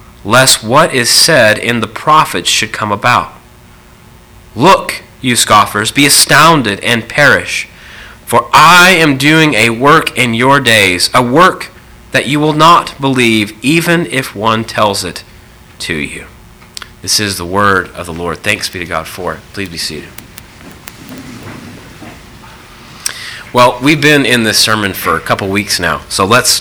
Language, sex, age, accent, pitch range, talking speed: English, male, 30-49, American, 105-150 Hz, 155 wpm